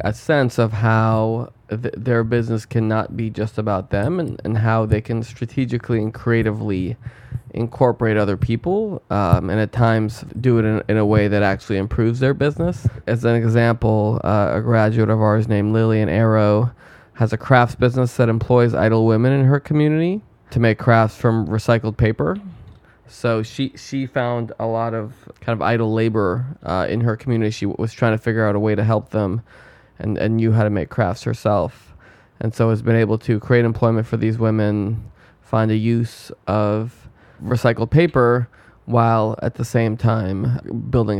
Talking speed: 175 wpm